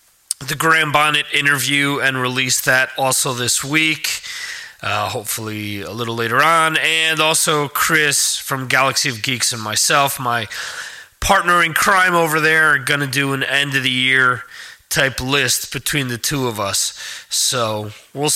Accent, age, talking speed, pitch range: American, 30-49, 150 wpm, 130-175 Hz